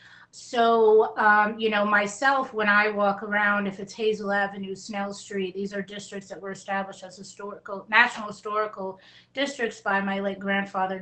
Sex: female